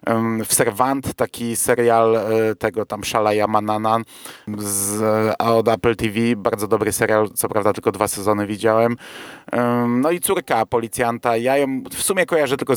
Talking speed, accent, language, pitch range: 135 wpm, native, Polish, 110-130 Hz